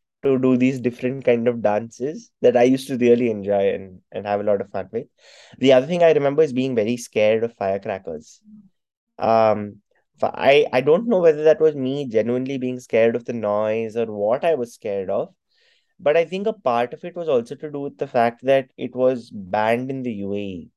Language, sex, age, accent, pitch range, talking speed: English, male, 20-39, Indian, 110-135 Hz, 215 wpm